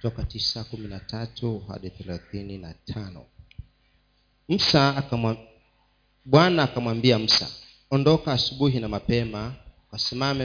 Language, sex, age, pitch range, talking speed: Swahili, male, 40-59, 115-140 Hz, 55 wpm